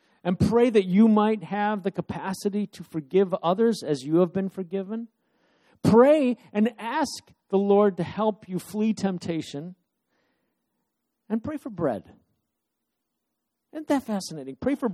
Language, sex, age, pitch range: English, male, 50-69, 155-220 Hz